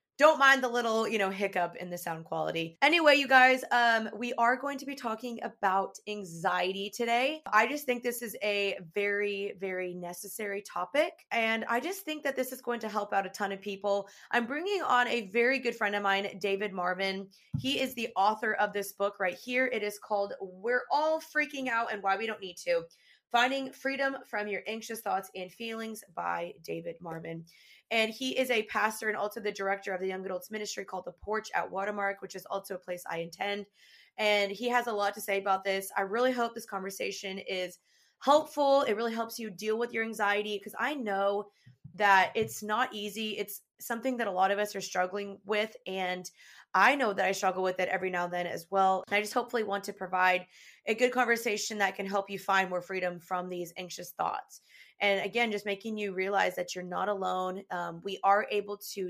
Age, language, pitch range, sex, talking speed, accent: 20-39, English, 190-235 Hz, female, 215 wpm, American